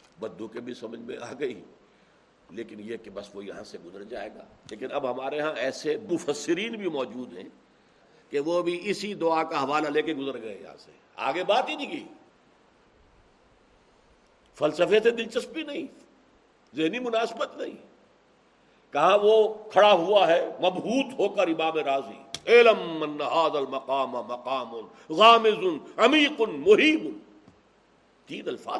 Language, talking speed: Urdu, 125 wpm